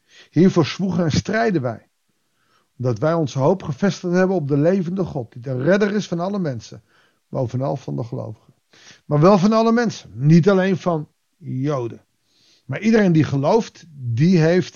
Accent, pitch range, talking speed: Dutch, 125-175 Hz, 165 wpm